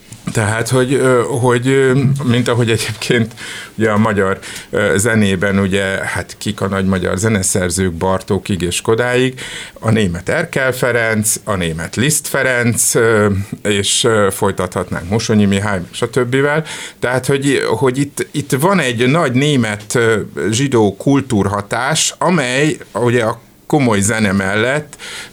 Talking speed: 120 wpm